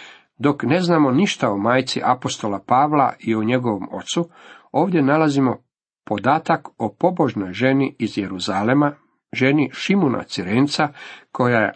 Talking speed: 130 wpm